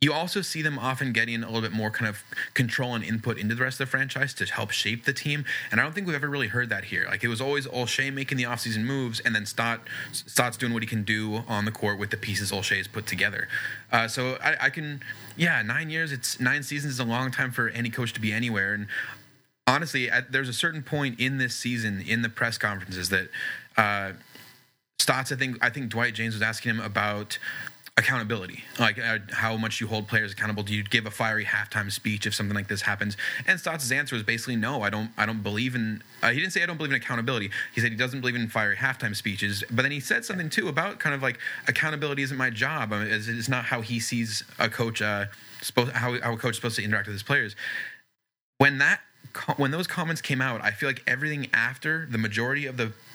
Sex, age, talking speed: male, 20-39, 245 wpm